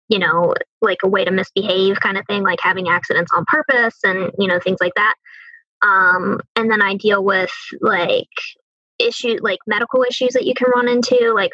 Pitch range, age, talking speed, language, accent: 195-255 Hz, 20-39, 200 wpm, English, American